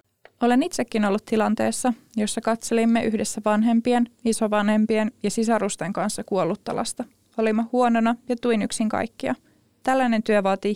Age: 20-39